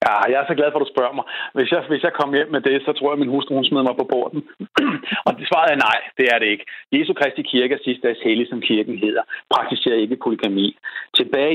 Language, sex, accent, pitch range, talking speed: Danish, male, native, 120-150 Hz, 255 wpm